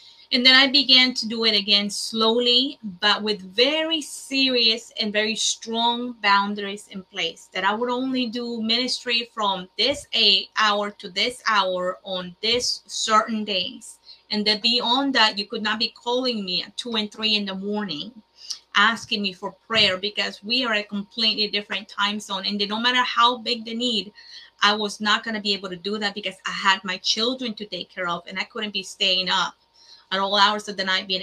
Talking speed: 200 wpm